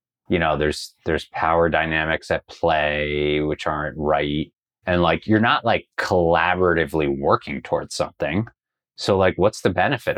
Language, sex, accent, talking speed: English, male, American, 145 wpm